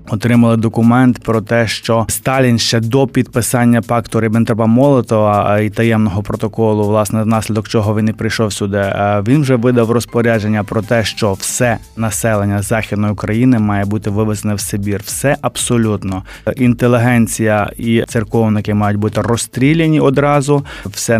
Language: Ukrainian